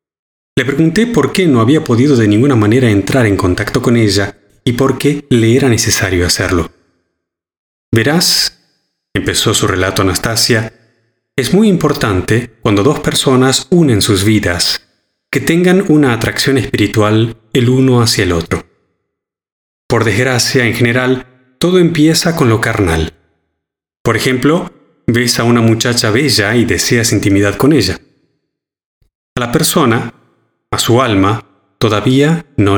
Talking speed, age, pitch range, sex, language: 135 wpm, 30-49, 100-140 Hz, male, Spanish